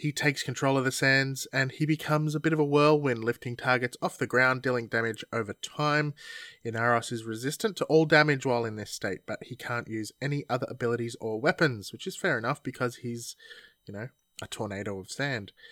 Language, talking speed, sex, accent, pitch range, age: English, 205 wpm, male, Australian, 115-150 Hz, 20-39